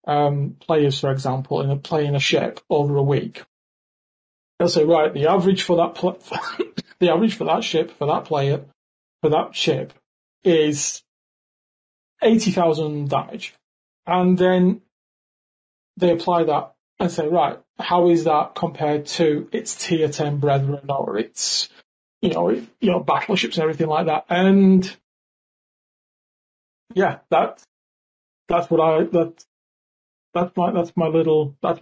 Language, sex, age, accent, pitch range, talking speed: English, male, 30-49, British, 150-190 Hz, 145 wpm